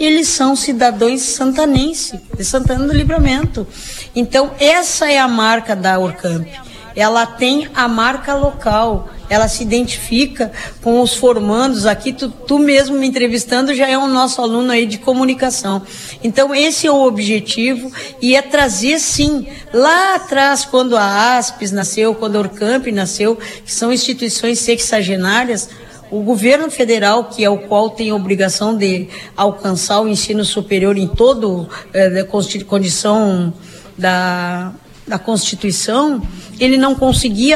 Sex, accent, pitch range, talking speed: female, Brazilian, 205-255 Hz, 140 wpm